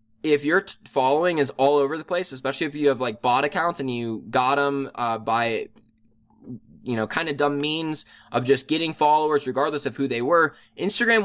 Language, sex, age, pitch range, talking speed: English, male, 20-39, 120-165 Hz, 200 wpm